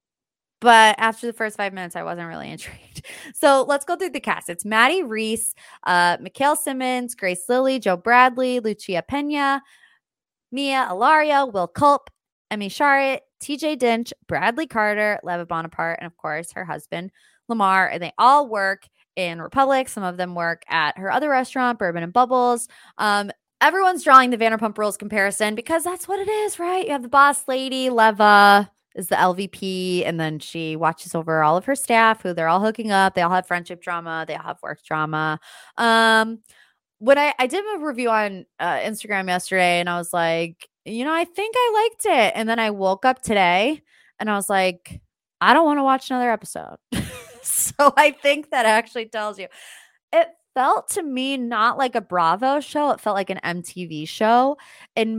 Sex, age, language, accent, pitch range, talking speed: female, 20-39, English, American, 185-265 Hz, 185 wpm